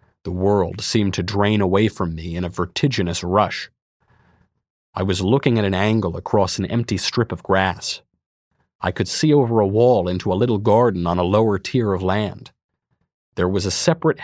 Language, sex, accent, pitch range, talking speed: English, male, American, 95-115 Hz, 185 wpm